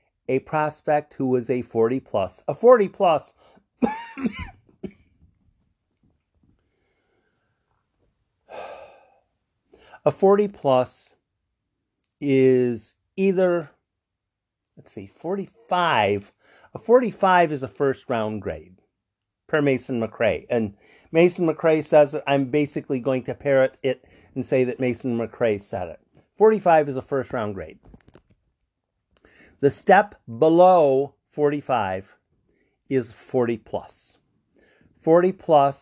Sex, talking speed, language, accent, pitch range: male, 95 wpm, English, American, 110-150 Hz